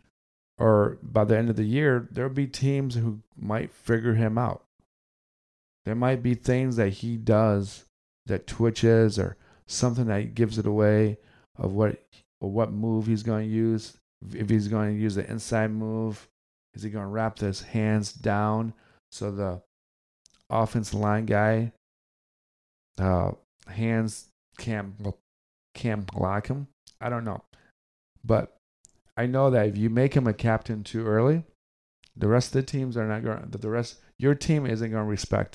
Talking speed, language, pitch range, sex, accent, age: 165 wpm, English, 100-120 Hz, male, American, 40-59